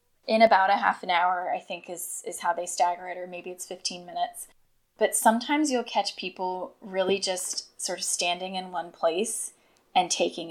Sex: female